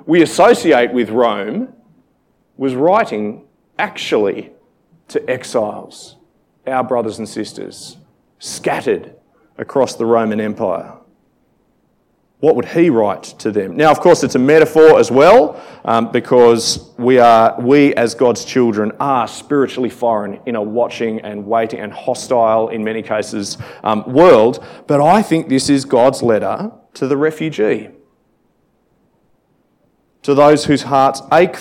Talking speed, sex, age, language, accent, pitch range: 135 wpm, male, 30-49, English, Australian, 110-150 Hz